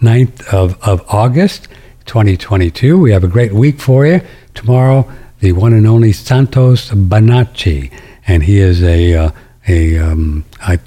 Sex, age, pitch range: male, 60-79, 100-125 Hz